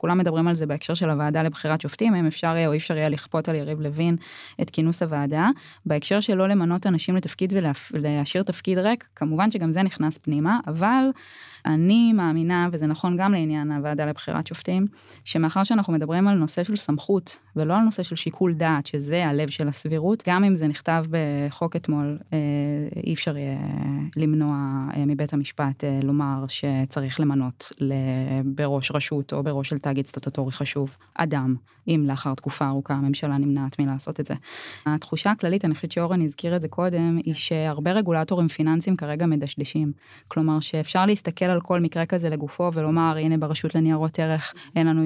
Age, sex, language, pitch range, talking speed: 20-39, female, Hebrew, 150-175 Hz, 175 wpm